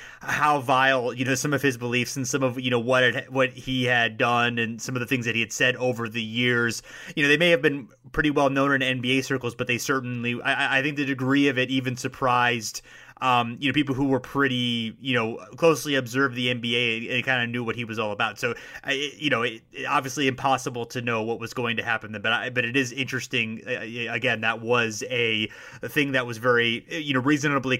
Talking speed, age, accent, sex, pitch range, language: 230 wpm, 30-49, American, male, 120-140 Hz, English